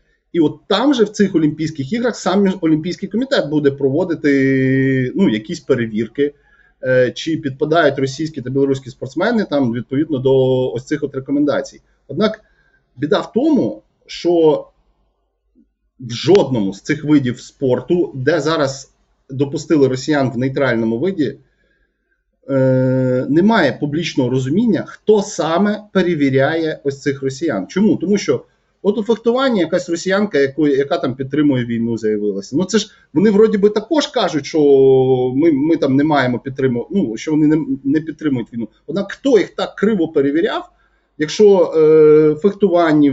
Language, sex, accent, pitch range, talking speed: Ukrainian, male, native, 135-185 Hz, 140 wpm